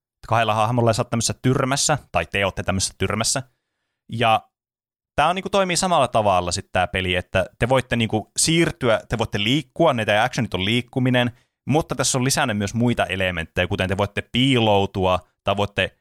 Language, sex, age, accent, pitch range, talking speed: Finnish, male, 20-39, native, 95-125 Hz, 170 wpm